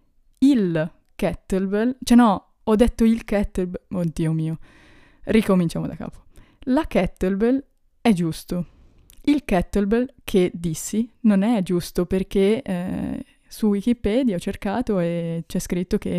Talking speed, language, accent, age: 125 wpm, Italian, native, 20-39